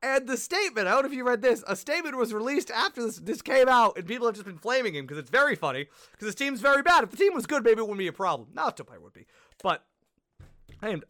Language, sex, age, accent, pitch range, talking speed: English, male, 30-49, American, 195-275 Hz, 290 wpm